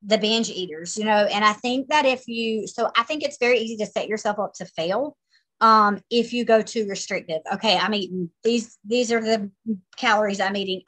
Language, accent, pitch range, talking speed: English, American, 195-240 Hz, 215 wpm